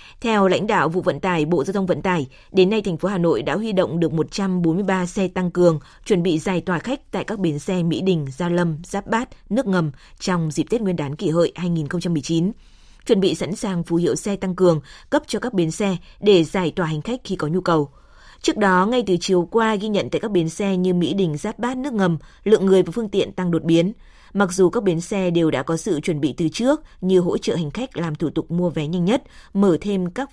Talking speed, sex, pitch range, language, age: 255 wpm, female, 165-200 Hz, Vietnamese, 20-39